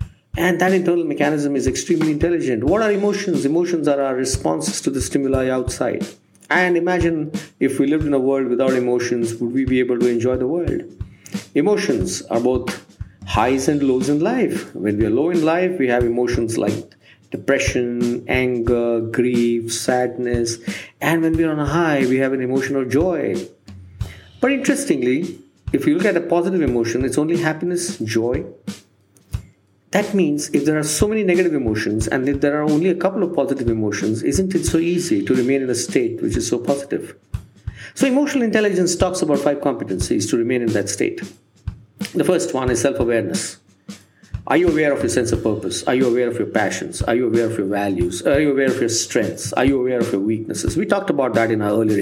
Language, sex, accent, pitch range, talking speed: English, male, Indian, 115-170 Hz, 195 wpm